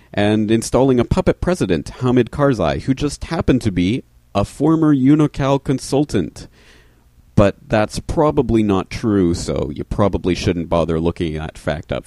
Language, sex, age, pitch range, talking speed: English, male, 40-59, 90-125 Hz, 150 wpm